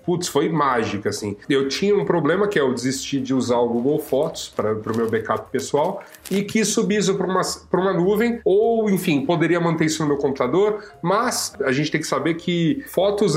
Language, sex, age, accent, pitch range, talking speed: Portuguese, male, 30-49, Brazilian, 130-180 Hz, 205 wpm